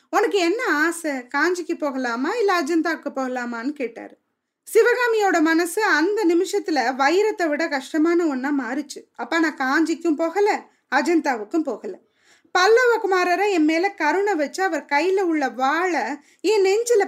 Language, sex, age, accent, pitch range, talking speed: Tamil, female, 20-39, native, 280-380 Hz, 115 wpm